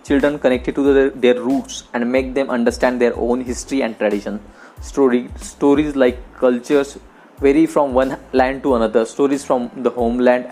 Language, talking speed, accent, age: English, 165 wpm, Indian, 20-39